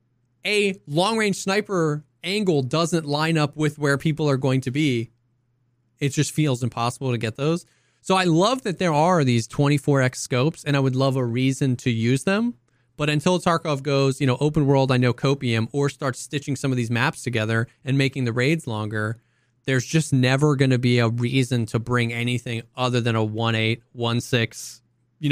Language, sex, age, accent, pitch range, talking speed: English, male, 20-39, American, 120-155 Hz, 190 wpm